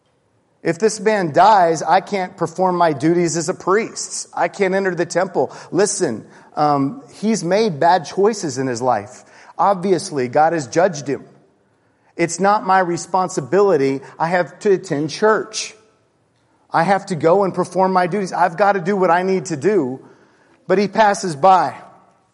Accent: American